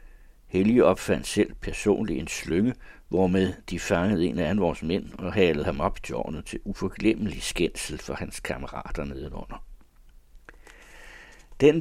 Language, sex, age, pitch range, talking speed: Danish, male, 60-79, 80-110 Hz, 130 wpm